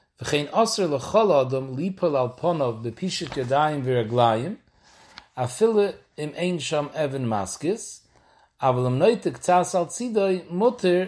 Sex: male